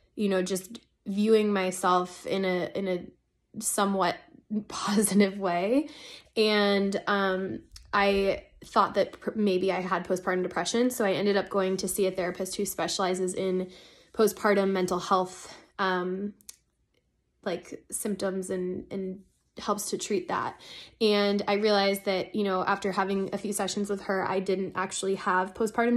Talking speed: 150 wpm